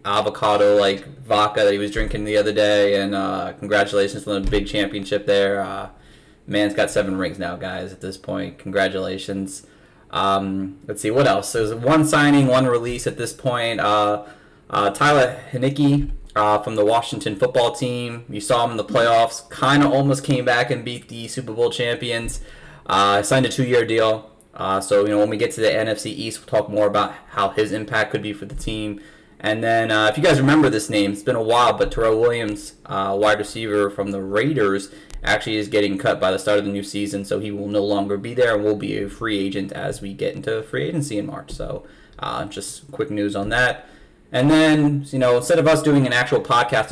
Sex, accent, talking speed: male, American, 215 wpm